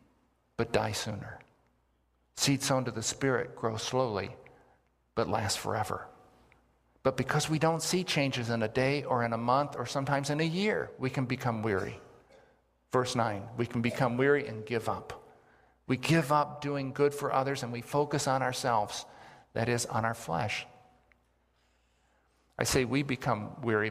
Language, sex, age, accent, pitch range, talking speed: English, male, 50-69, American, 115-145 Hz, 165 wpm